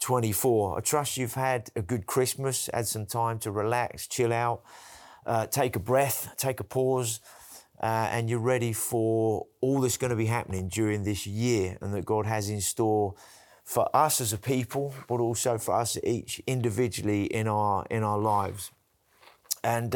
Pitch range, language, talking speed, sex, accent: 105-125 Hz, English, 175 wpm, male, British